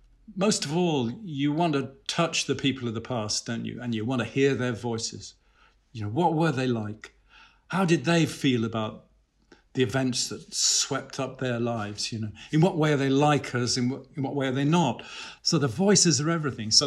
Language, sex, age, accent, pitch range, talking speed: English, male, 50-69, British, 120-165 Hz, 220 wpm